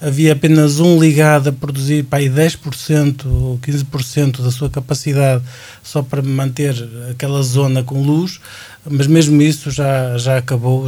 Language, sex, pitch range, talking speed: Portuguese, male, 130-160 Hz, 145 wpm